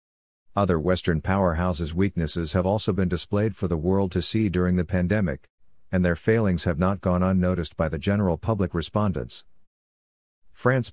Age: 50-69